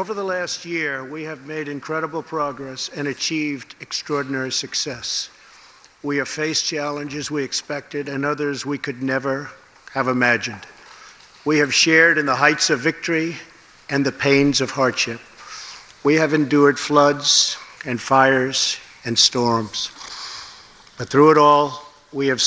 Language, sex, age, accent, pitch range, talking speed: English, male, 50-69, American, 130-150 Hz, 140 wpm